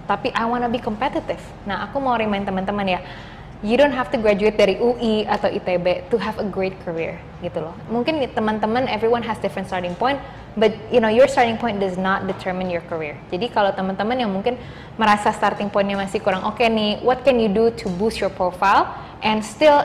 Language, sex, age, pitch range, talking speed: Indonesian, female, 20-39, 195-245 Hz, 210 wpm